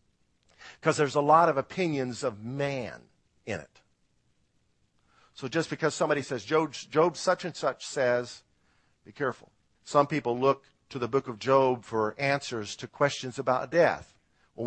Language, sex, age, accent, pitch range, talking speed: English, male, 50-69, American, 120-170 Hz, 155 wpm